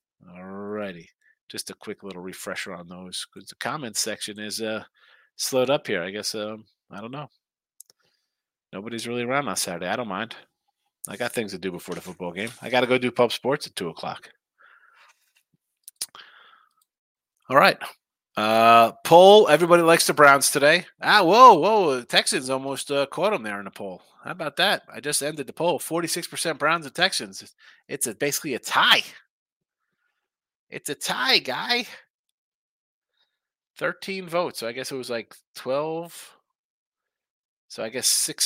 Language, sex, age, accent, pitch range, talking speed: English, male, 30-49, American, 110-160 Hz, 165 wpm